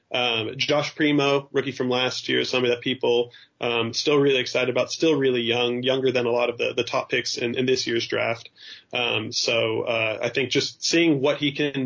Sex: male